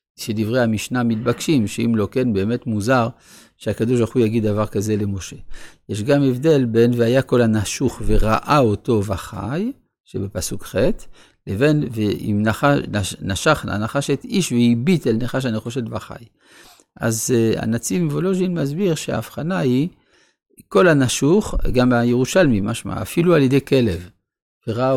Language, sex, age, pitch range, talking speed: Hebrew, male, 50-69, 105-145 Hz, 130 wpm